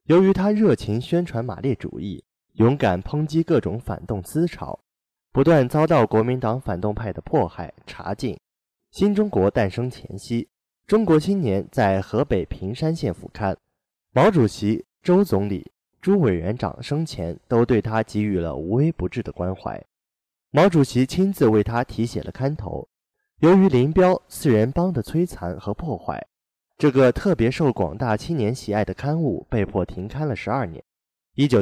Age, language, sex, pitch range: 20-39, Chinese, male, 100-155 Hz